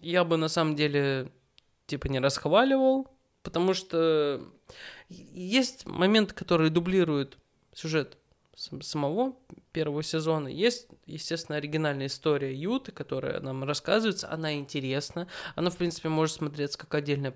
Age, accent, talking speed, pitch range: 20-39, native, 120 wpm, 140-175 Hz